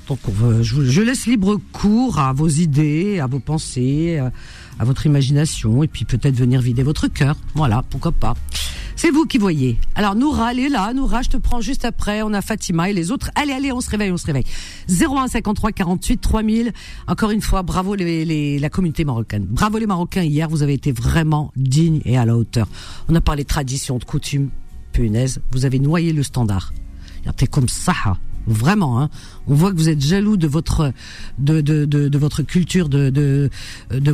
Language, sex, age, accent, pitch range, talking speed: French, female, 50-69, French, 125-185 Hz, 195 wpm